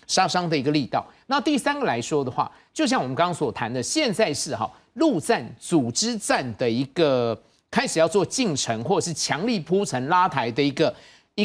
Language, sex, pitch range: Chinese, male, 145-225 Hz